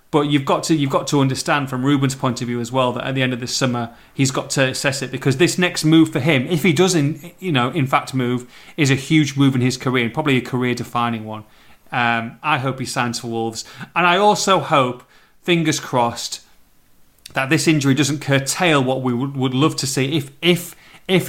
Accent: British